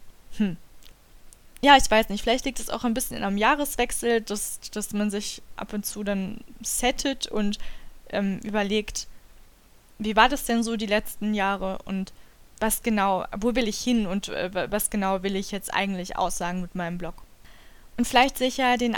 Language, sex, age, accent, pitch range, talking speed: German, female, 20-39, German, 195-235 Hz, 185 wpm